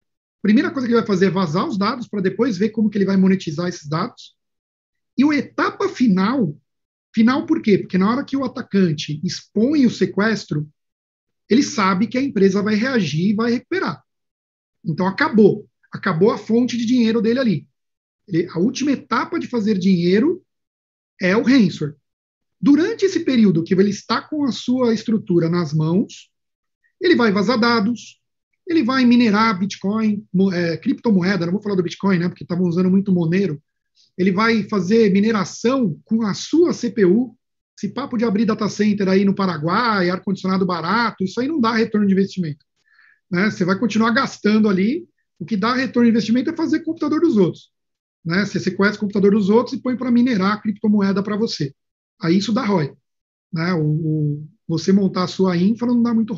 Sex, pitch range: male, 185-240 Hz